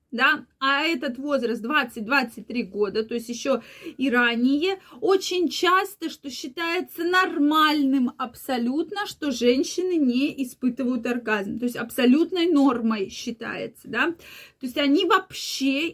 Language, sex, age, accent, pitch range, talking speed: Russian, female, 20-39, native, 250-325 Hz, 120 wpm